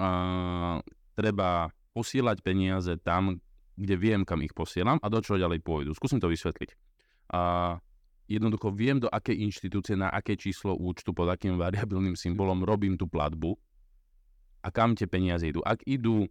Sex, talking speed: male, 155 wpm